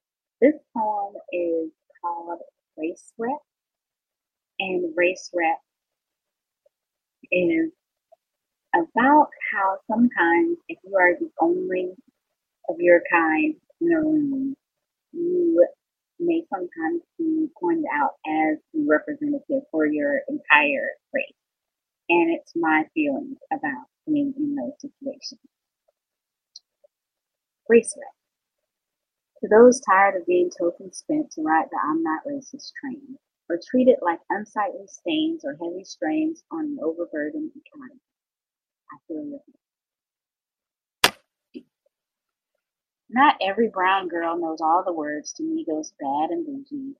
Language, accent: English, American